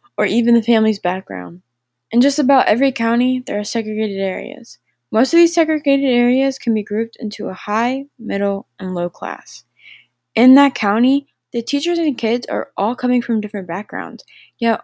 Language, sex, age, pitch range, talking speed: English, female, 10-29, 200-255 Hz, 175 wpm